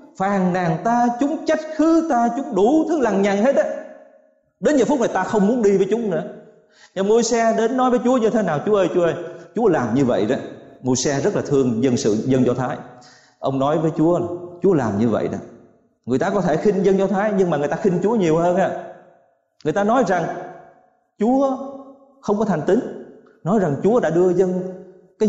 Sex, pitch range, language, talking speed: male, 135-225 Hz, Vietnamese, 230 wpm